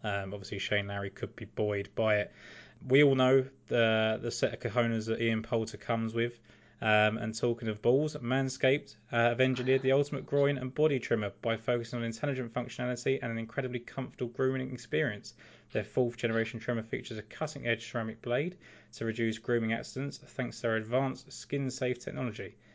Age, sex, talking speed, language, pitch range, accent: 20-39, male, 175 wpm, English, 105-125 Hz, British